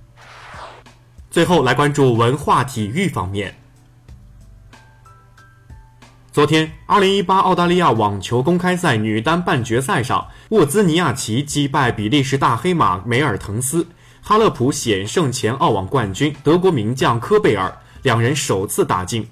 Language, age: Chinese, 20-39